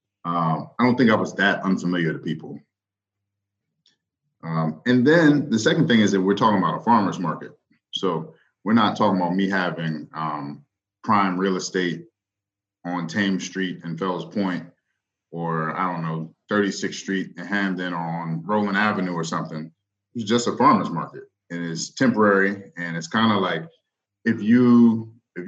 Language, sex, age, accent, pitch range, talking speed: English, male, 30-49, American, 85-105 Hz, 165 wpm